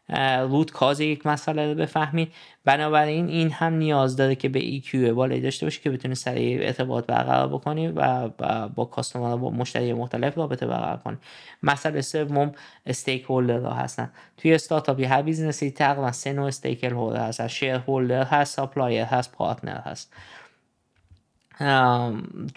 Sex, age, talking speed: male, 20-39, 150 wpm